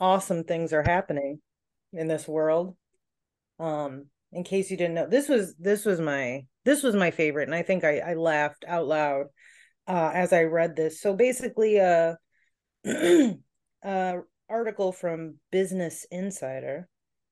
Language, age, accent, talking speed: English, 30-49, American, 150 wpm